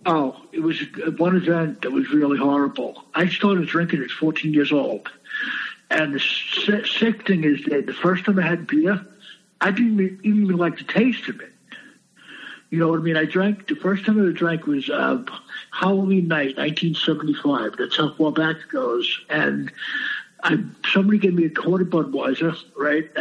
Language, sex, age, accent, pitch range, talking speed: English, male, 60-79, American, 155-190 Hz, 175 wpm